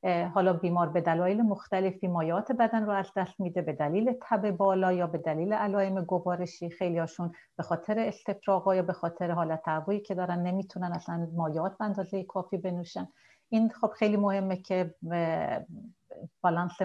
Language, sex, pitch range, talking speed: Persian, female, 170-200 Hz, 145 wpm